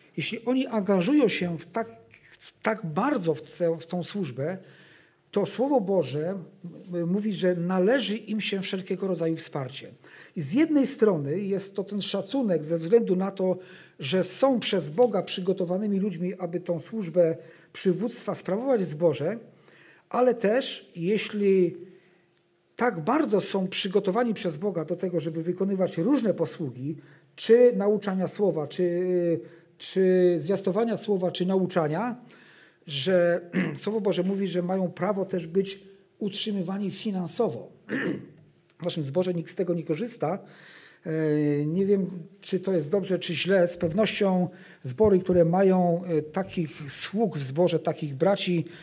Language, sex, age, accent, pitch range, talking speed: Polish, male, 50-69, native, 170-200 Hz, 135 wpm